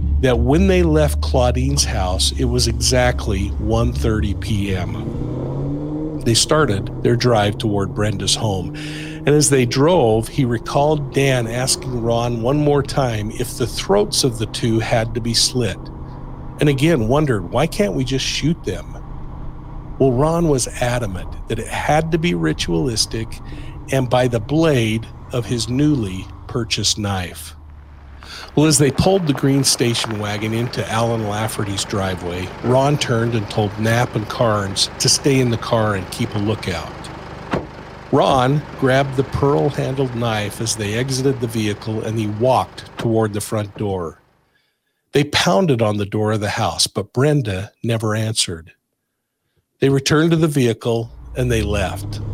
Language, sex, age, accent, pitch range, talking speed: English, male, 50-69, American, 105-140 Hz, 155 wpm